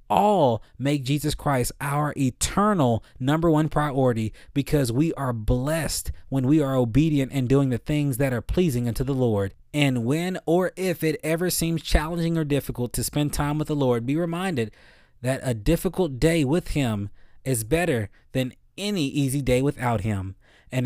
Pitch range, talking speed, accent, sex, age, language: 120-160 Hz, 175 wpm, American, male, 20-39, English